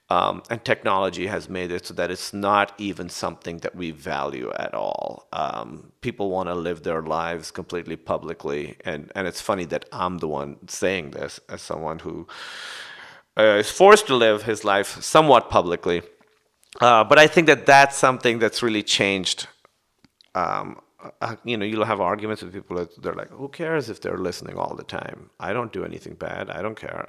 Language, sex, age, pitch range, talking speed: English, male, 40-59, 90-130 Hz, 190 wpm